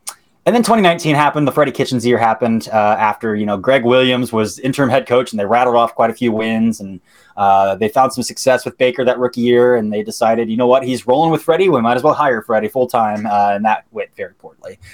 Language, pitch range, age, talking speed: English, 105-135 Hz, 20-39, 245 wpm